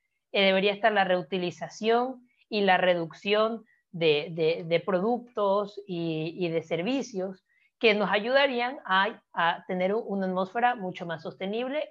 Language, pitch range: Spanish, 180-235 Hz